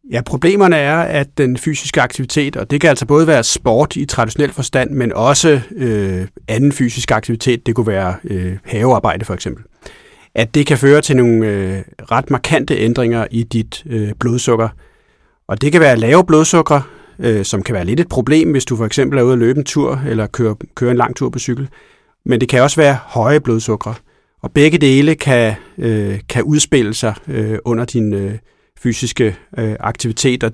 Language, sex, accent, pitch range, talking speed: Danish, male, native, 110-140 Hz, 190 wpm